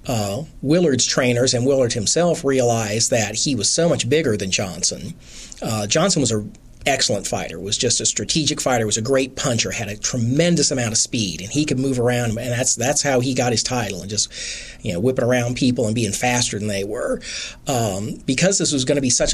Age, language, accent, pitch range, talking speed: 40-59, English, American, 115-145 Hz, 215 wpm